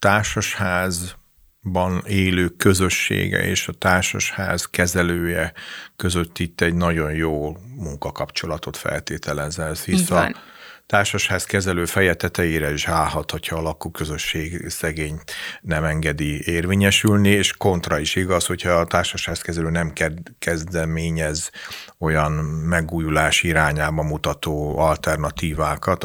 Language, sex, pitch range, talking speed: Hungarian, male, 75-85 Hz, 100 wpm